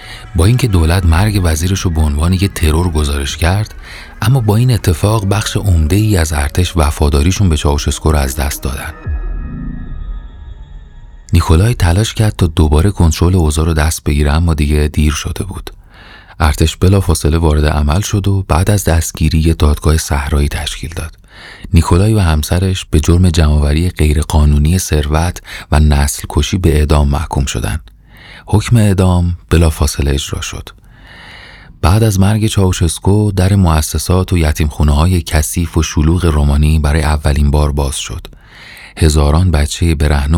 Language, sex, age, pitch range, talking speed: Persian, male, 30-49, 75-95 Hz, 145 wpm